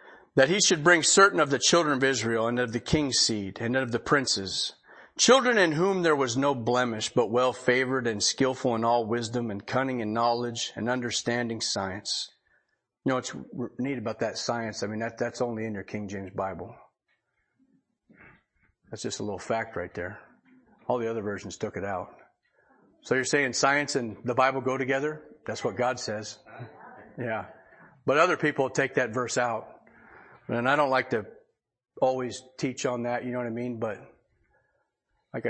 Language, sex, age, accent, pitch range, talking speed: English, male, 40-59, American, 115-155 Hz, 180 wpm